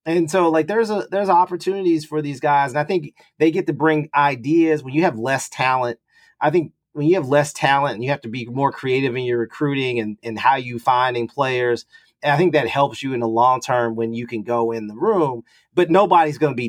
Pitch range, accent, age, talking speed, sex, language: 120-155 Hz, American, 30-49, 245 wpm, male, English